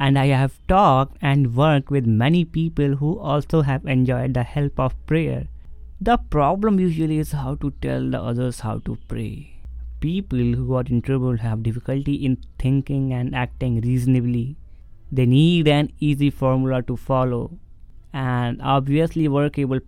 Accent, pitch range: Indian, 120-145 Hz